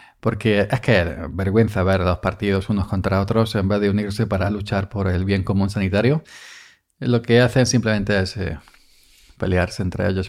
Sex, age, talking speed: male, 40-59, 180 wpm